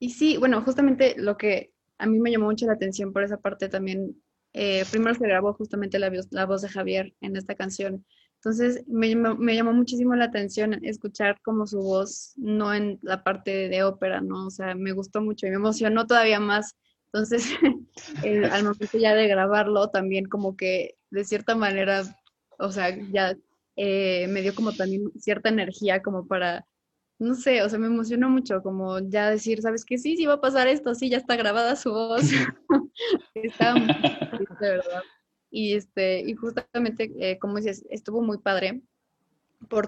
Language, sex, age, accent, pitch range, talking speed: Spanish, female, 20-39, Mexican, 190-225 Hz, 190 wpm